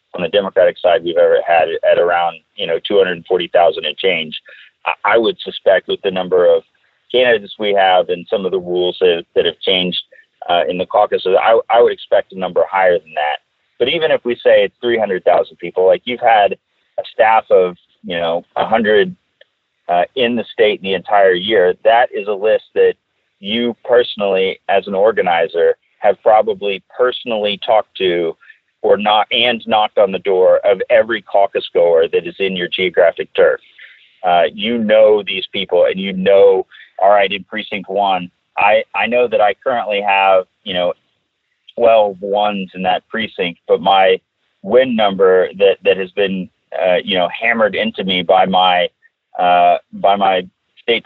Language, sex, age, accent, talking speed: English, male, 30-49, American, 175 wpm